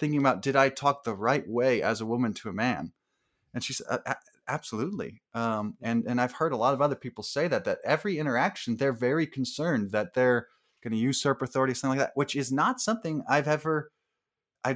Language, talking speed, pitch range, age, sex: English, 210 wpm, 115-145 Hz, 20-39, male